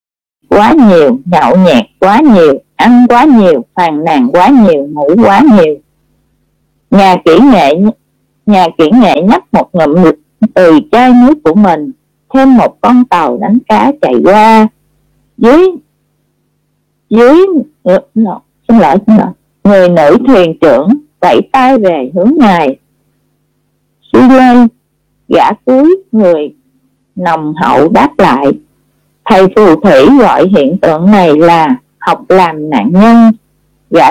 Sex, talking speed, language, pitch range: female, 130 wpm, Vietnamese, 180-275 Hz